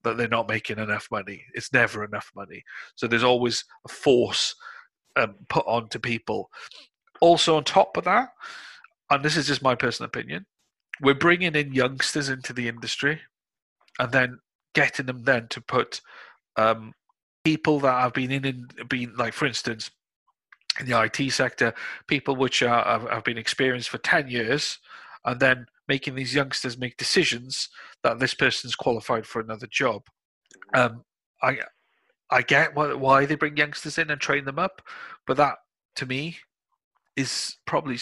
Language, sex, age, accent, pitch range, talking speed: English, male, 40-59, British, 120-150 Hz, 165 wpm